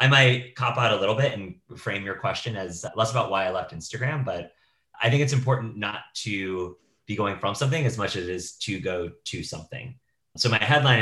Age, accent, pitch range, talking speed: 30-49, American, 90-125 Hz, 225 wpm